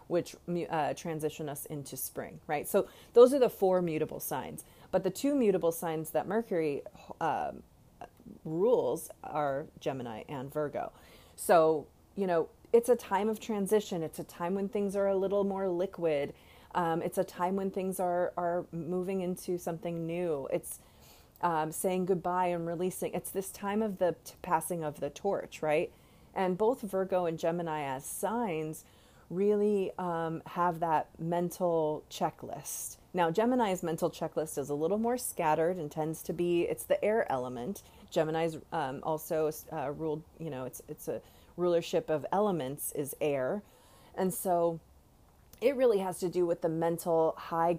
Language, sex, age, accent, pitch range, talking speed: English, female, 30-49, American, 155-185 Hz, 160 wpm